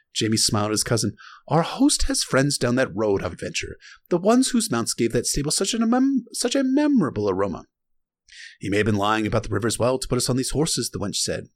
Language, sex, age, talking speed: English, male, 30-49, 245 wpm